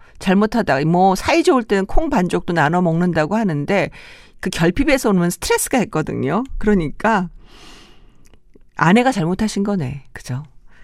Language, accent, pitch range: Korean, native, 160-215 Hz